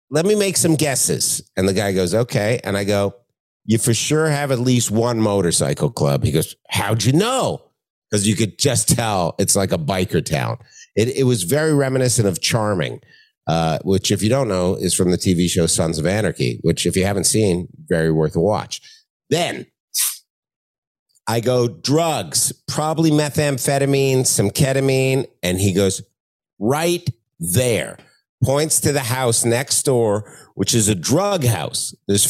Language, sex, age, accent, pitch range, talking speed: English, male, 50-69, American, 100-140 Hz, 170 wpm